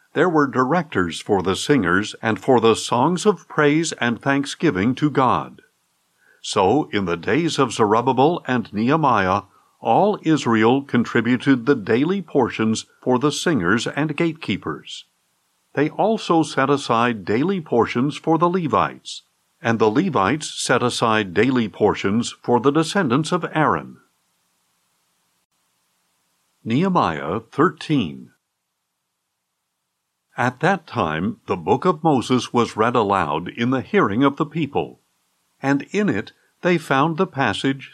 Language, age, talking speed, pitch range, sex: English, 50-69, 130 wpm, 120-160 Hz, male